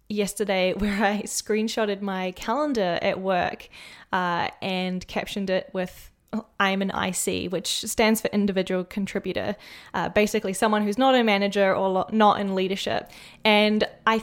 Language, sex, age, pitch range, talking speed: English, female, 10-29, 195-225 Hz, 145 wpm